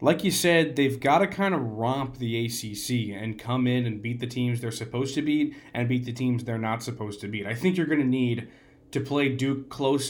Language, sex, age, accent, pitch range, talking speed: English, male, 20-39, American, 115-145 Hz, 245 wpm